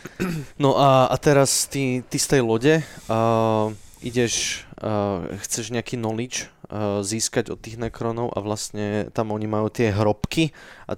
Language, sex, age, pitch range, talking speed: Slovak, male, 20-39, 105-125 Hz, 155 wpm